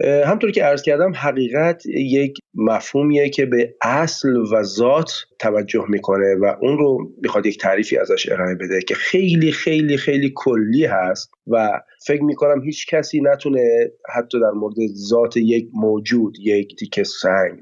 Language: Persian